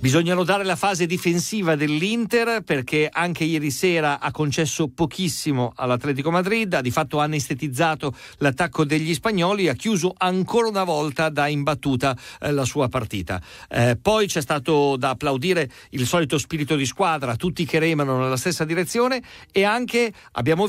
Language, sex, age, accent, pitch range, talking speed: Italian, male, 50-69, native, 145-190 Hz, 155 wpm